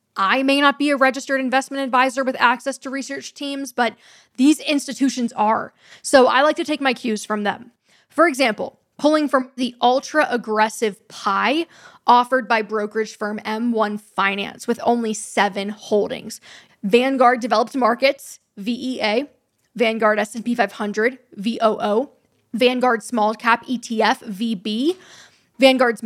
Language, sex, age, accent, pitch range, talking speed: English, female, 10-29, American, 215-265 Hz, 130 wpm